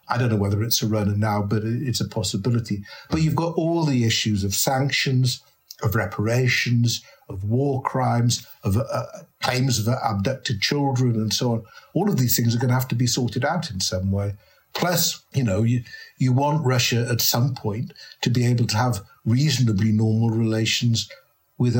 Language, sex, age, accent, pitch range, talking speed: English, male, 60-79, British, 110-130 Hz, 185 wpm